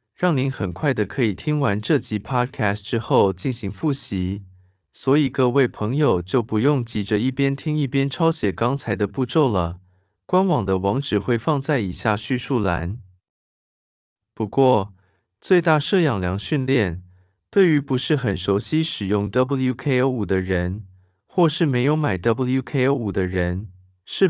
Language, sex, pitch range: Chinese, male, 100-140 Hz